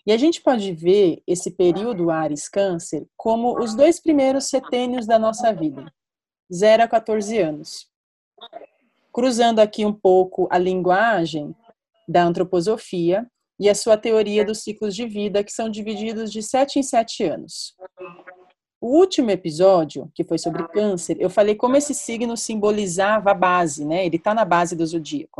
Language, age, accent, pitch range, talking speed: Portuguese, 30-49, Brazilian, 180-240 Hz, 155 wpm